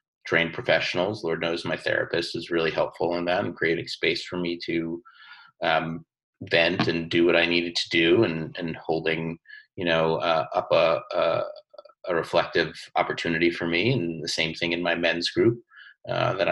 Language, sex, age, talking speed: English, male, 30-49, 180 wpm